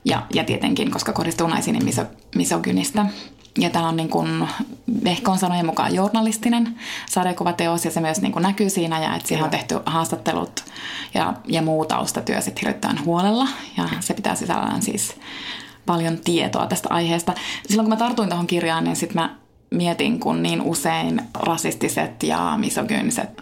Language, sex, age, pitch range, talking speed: Finnish, female, 20-39, 165-215 Hz, 155 wpm